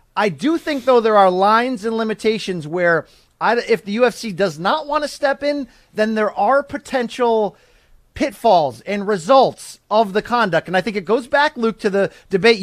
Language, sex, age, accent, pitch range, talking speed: English, male, 30-49, American, 205-255 Hz, 185 wpm